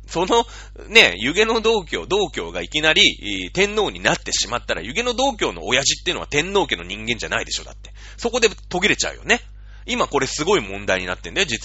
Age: 30-49